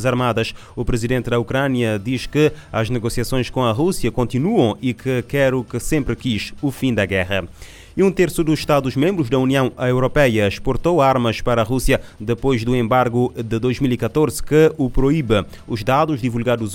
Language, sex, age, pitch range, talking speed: Portuguese, male, 20-39, 115-135 Hz, 170 wpm